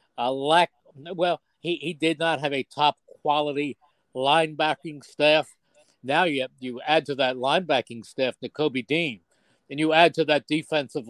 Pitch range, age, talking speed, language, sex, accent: 135-175 Hz, 50-69, 160 wpm, English, male, American